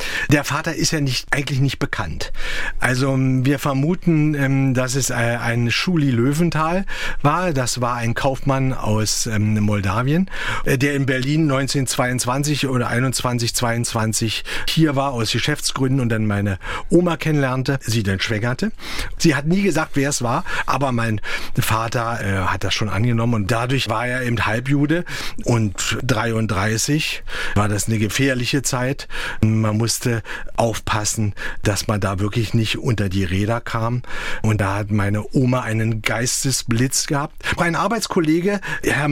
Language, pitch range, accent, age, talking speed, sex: German, 115-160 Hz, German, 40-59, 140 wpm, male